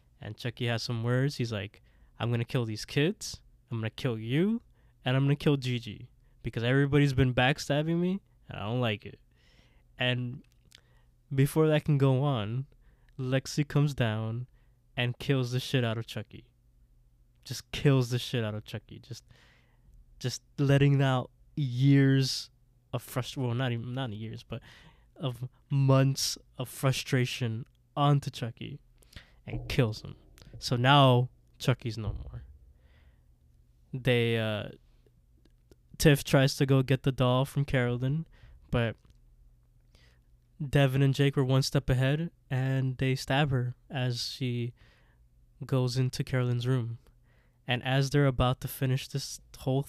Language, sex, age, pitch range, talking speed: English, male, 20-39, 115-135 Hz, 140 wpm